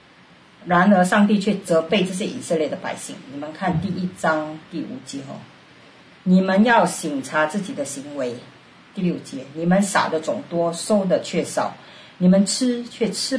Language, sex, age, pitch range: Chinese, female, 50-69, 160-220 Hz